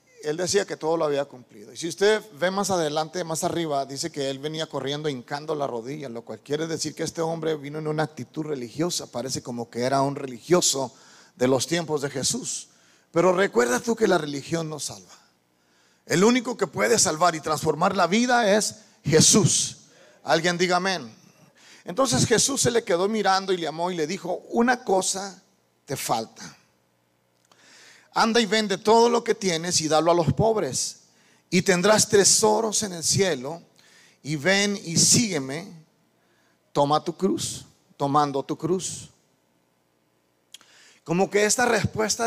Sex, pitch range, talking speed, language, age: male, 135-190 Hz, 165 wpm, Spanish, 40-59